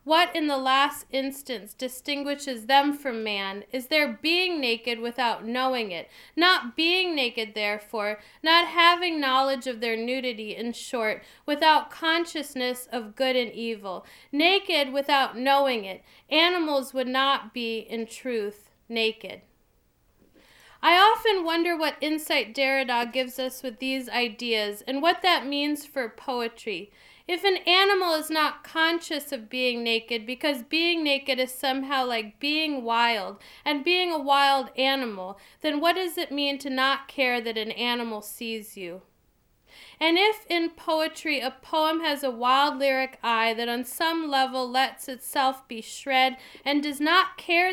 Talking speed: 150 wpm